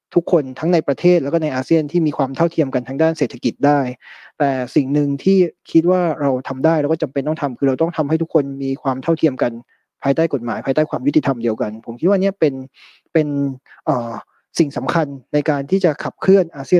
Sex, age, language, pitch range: male, 20-39, Thai, 140-175 Hz